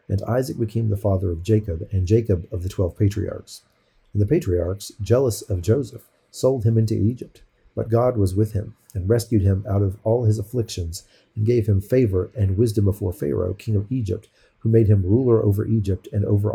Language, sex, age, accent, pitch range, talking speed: English, male, 40-59, American, 100-115 Hz, 200 wpm